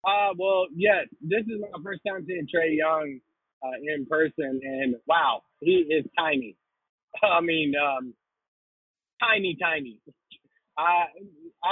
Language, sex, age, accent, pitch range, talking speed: English, male, 20-39, American, 150-190 Hz, 130 wpm